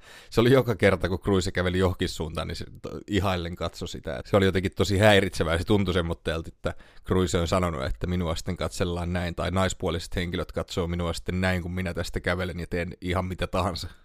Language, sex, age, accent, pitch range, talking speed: Finnish, male, 30-49, native, 90-105 Hz, 195 wpm